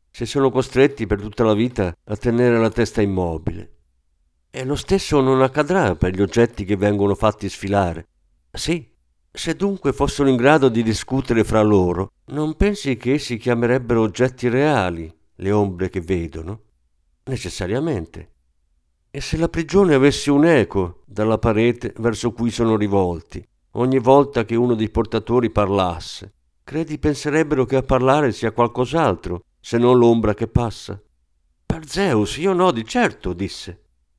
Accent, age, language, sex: native, 50-69, Italian, male